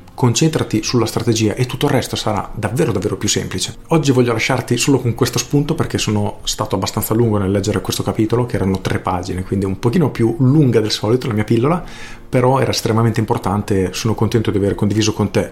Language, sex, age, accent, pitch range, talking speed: Italian, male, 40-59, native, 100-125 Hz, 210 wpm